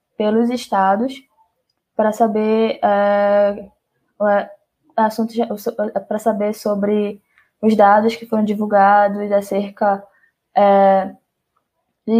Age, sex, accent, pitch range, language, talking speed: 10-29, female, Brazilian, 200-230 Hz, Portuguese, 65 wpm